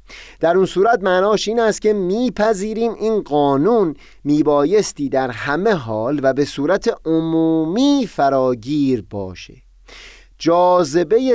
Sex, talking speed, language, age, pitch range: male, 110 wpm, Persian, 30-49, 125-185 Hz